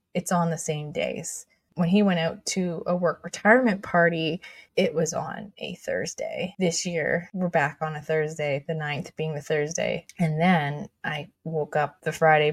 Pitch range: 155-185 Hz